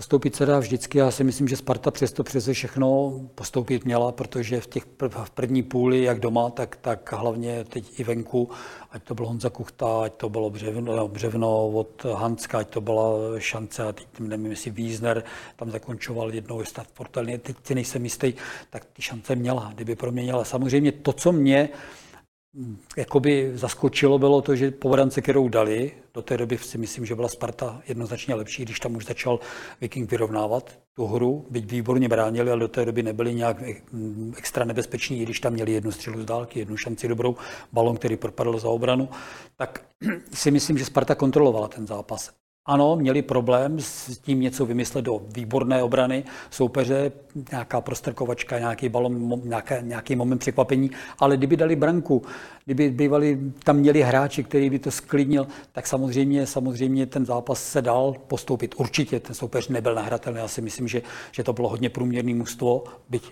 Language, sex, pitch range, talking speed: Czech, male, 115-135 Hz, 175 wpm